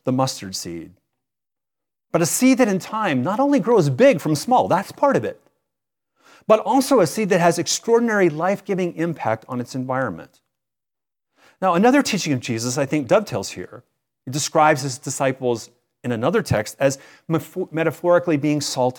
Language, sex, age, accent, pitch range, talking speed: English, male, 40-59, American, 130-205 Hz, 160 wpm